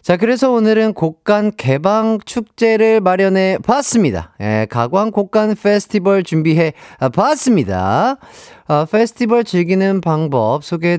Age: 40-59